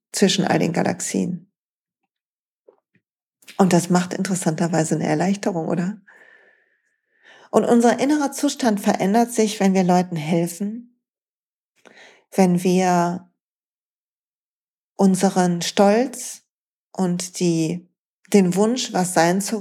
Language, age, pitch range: German, 40-59, 180-225 Hz